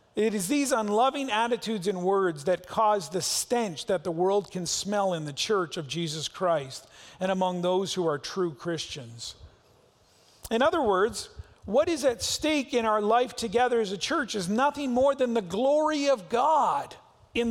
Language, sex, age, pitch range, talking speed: English, male, 40-59, 180-240 Hz, 180 wpm